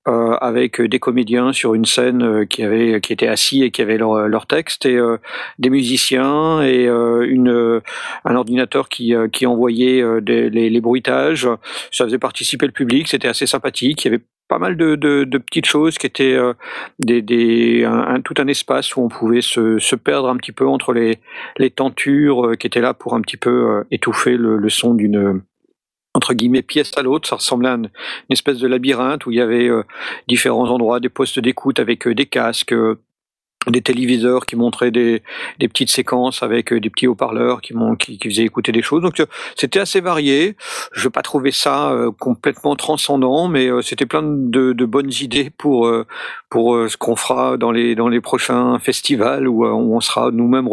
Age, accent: 50-69, French